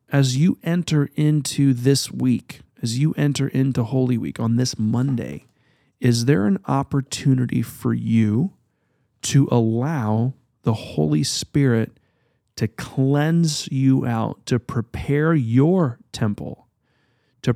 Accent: American